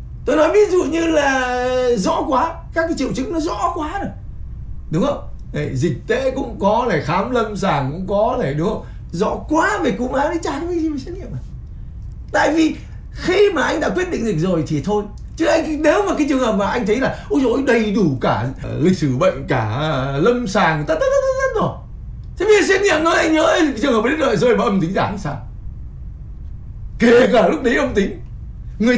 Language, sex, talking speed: Vietnamese, male, 235 wpm